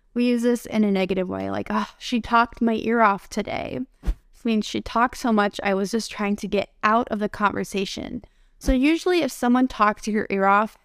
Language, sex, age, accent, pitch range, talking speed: English, female, 20-39, American, 205-250 Hz, 220 wpm